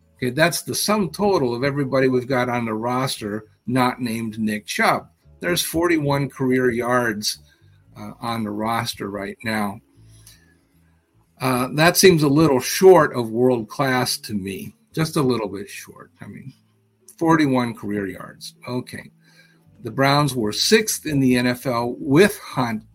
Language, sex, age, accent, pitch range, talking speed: English, male, 50-69, American, 105-130 Hz, 145 wpm